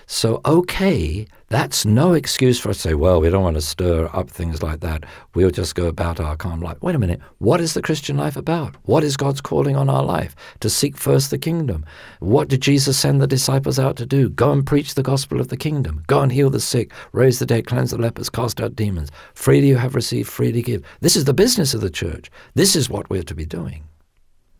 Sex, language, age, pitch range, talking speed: male, English, 50-69, 85-135 Hz, 240 wpm